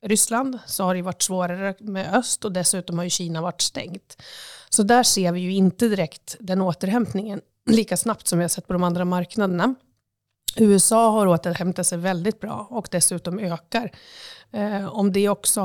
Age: 30-49